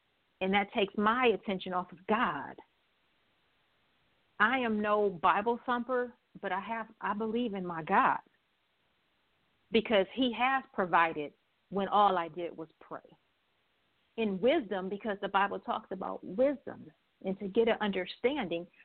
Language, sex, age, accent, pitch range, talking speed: English, female, 50-69, American, 190-230 Hz, 140 wpm